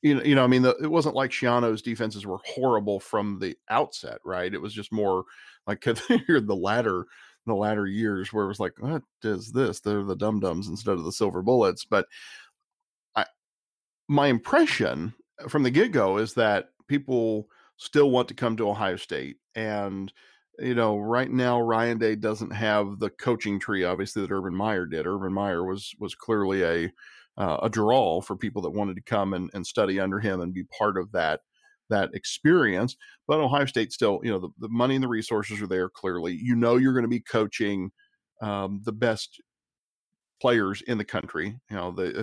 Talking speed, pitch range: 190 wpm, 95-120 Hz